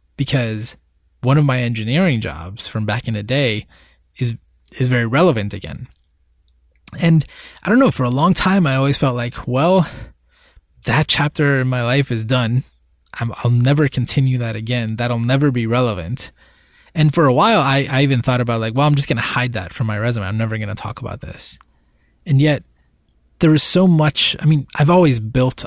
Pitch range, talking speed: 110-145 Hz, 195 wpm